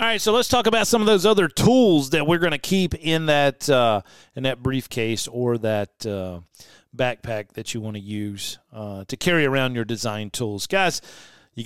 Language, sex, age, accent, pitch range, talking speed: English, male, 40-59, American, 130-170 Hz, 205 wpm